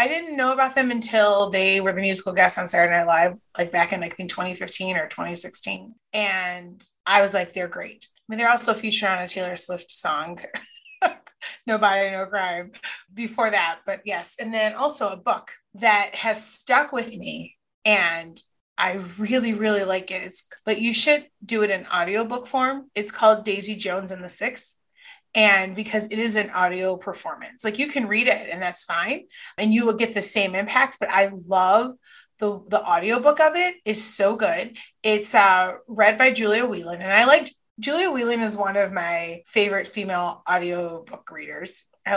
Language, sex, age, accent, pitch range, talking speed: English, female, 30-49, American, 190-240 Hz, 190 wpm